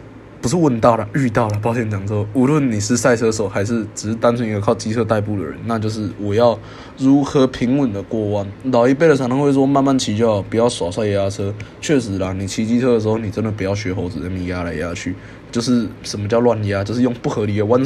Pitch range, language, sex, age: 100-130 Hz, Chinese, male, 20-39